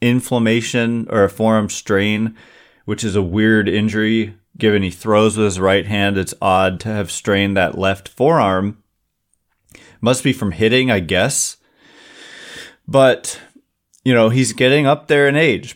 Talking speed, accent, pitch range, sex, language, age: 150 wpm, American, 100-125 Hz, male, English, 30-49